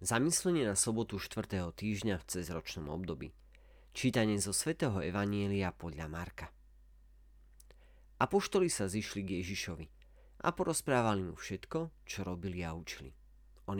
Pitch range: 80-110 Hz